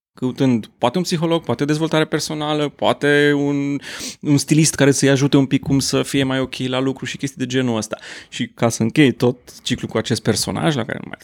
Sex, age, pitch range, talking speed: male, 30-49, 125-175 Hz, 225 wpm